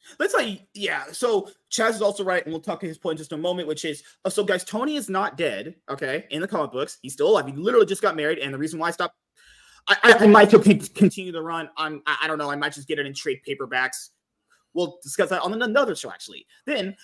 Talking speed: 270 wpm